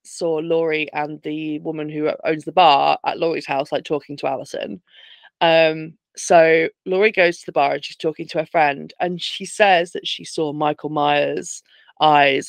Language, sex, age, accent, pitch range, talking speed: English, female, 20-39, British, 150-185 Hz, 185 wpm